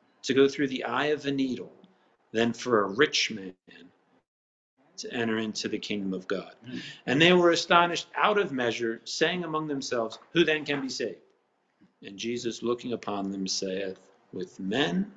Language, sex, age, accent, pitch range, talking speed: English, male, 50-69, American, 100-140 Hz, 170 wpm